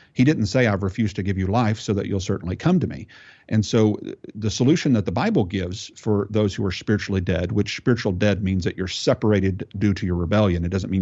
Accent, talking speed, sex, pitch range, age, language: American, 240 wpm, male, 95-110 Hz, 50-69, English